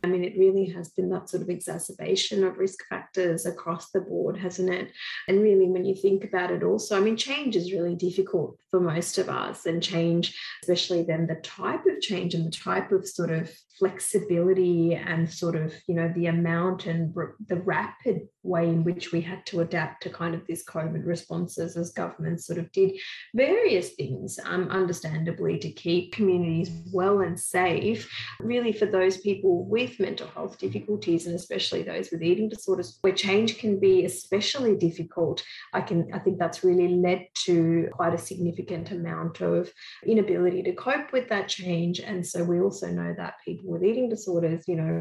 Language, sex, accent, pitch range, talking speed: English, female, Australian, 170-195 Hz, 185 wpm